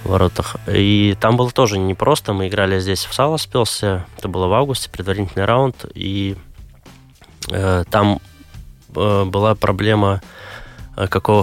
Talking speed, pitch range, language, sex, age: 125 wpm, 95-110 Hz, Russian, male, 20-39